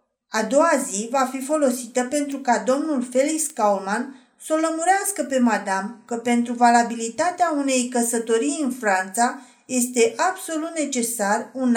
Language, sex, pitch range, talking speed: Romanian, female, 220-275 Hz, 135 wpm